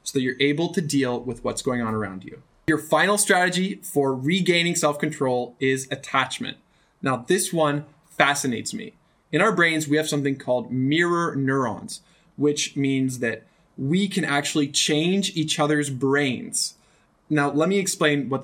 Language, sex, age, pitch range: English, male, 20-39, 135-175 Hz